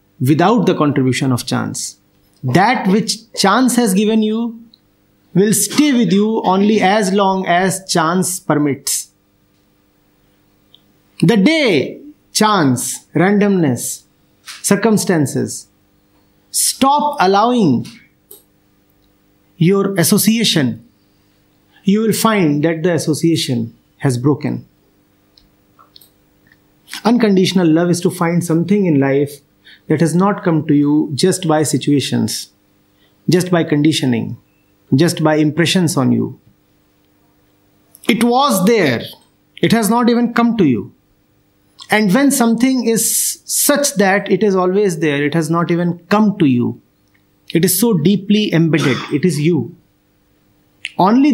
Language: English